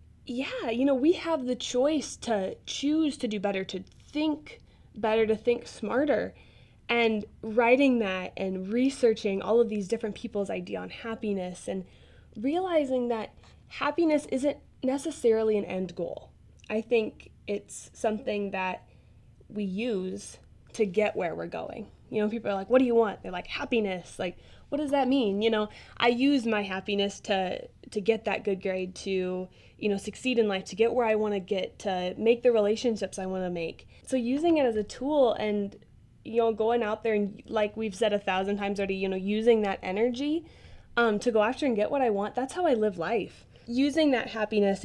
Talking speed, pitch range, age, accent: 195 wpm, 195-245 Hz, 20-39, American